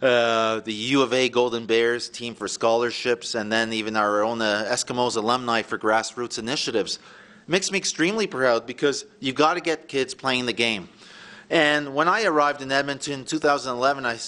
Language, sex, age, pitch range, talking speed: English, male, 40-59, 120-155 Hz, 175 wpm